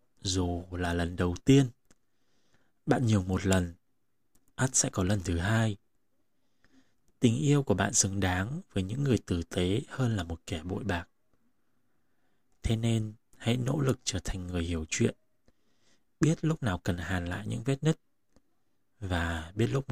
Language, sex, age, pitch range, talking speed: Vietnamese, male, 20-39, 90-125 Hz, 165 wpm